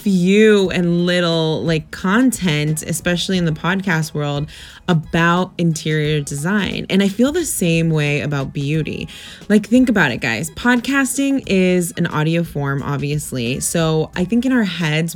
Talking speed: 150 wpm